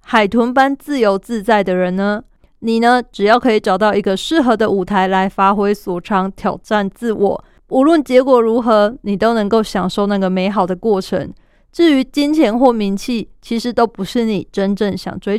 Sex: female